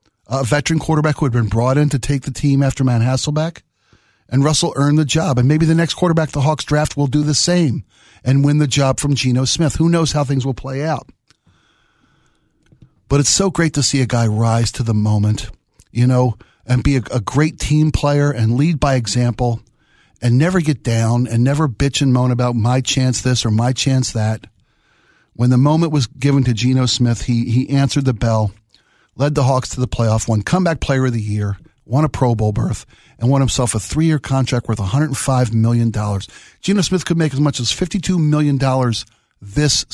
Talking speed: 205 wpm